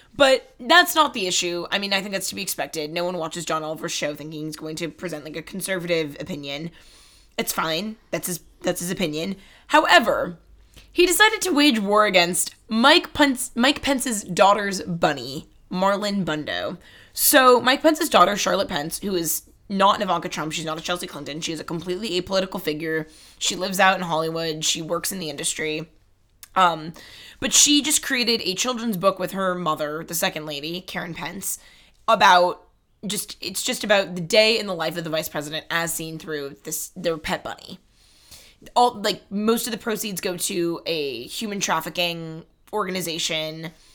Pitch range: 160-220 Hz